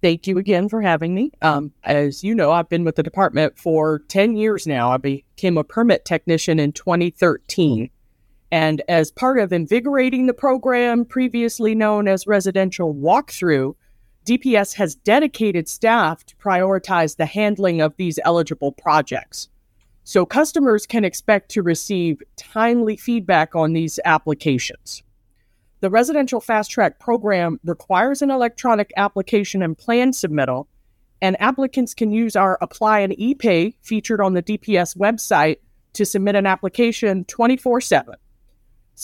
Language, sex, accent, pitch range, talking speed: English, female, American, 160-225 Hz, 140 wpm